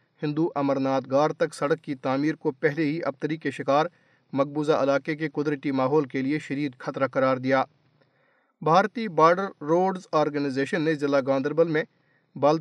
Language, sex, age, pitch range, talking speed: Urdu, male, 40-59, 140-165 Hz, 155 wpm